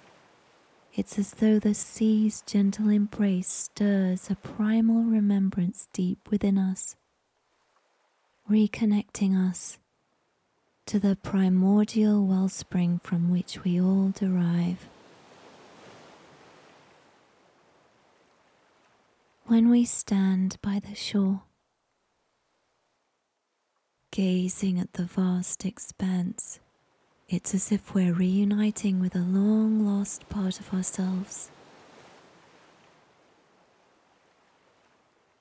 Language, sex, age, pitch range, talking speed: English, female, 30-49, 185-210 Hz, 80 wpm